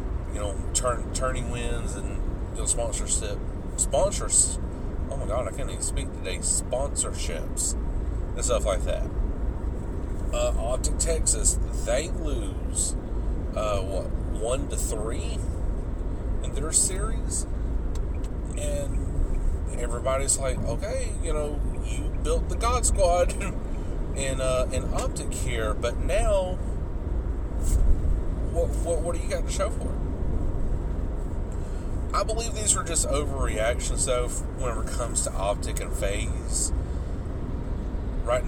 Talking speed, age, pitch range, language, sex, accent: 120 wpm, 40-59, 75-95 Hz, English, male, American